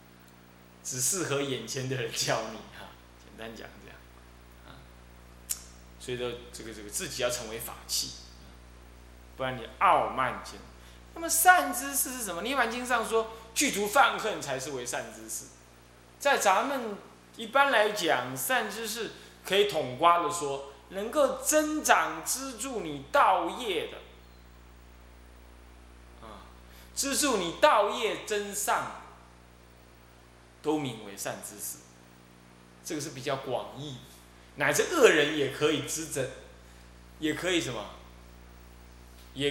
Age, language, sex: 20-39, Chinese, male